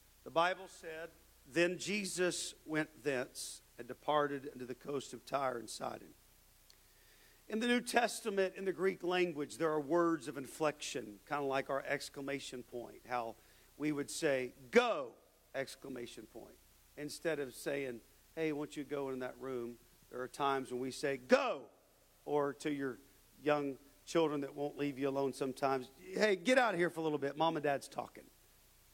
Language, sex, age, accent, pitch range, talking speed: English, male, 50-69, American, 135-170 Hz, 170 wpm